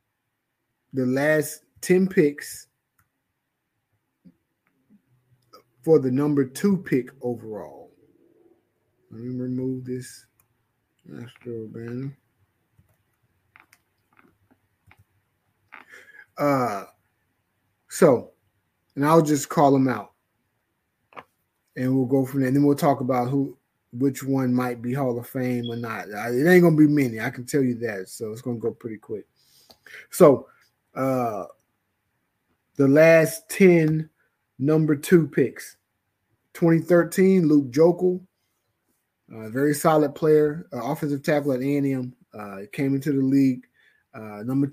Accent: American